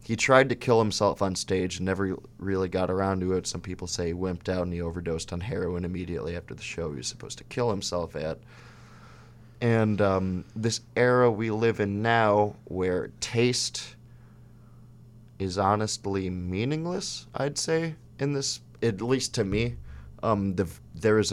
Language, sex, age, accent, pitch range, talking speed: English, male, 20-39, American, 90-115 Hz, 170 wpm